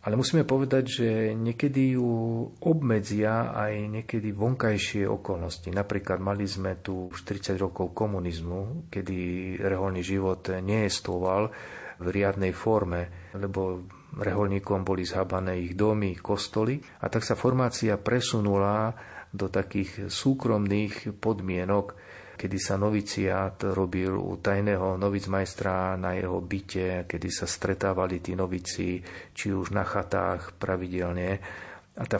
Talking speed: 120 wpm